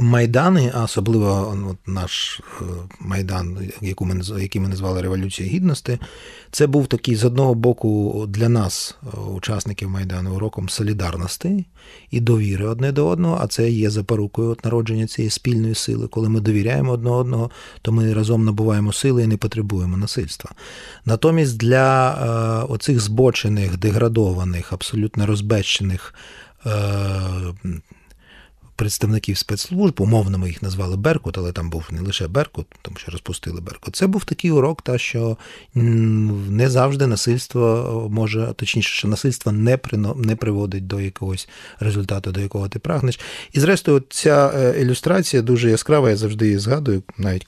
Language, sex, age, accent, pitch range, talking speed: Ukrainian, male, 30-49, native, 100-130 Hz, 140 wpm